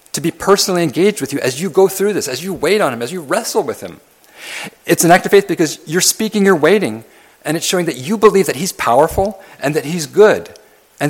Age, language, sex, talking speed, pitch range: 40-59, English, male, 245 wpm, 125-170 Hz